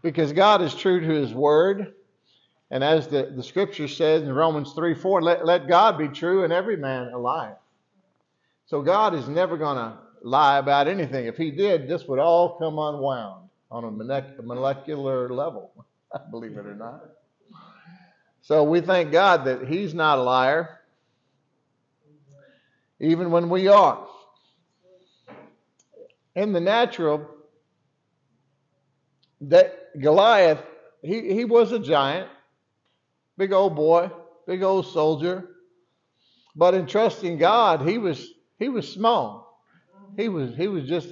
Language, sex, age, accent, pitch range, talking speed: English, male, 50-69, American, 140-185 Hz, 140 wpm